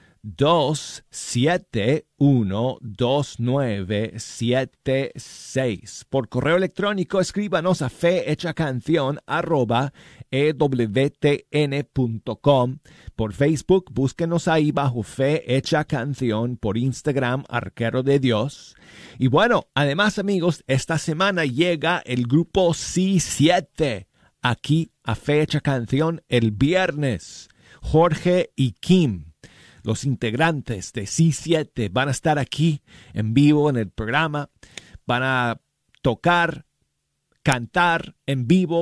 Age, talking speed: 40-59, 95 wpm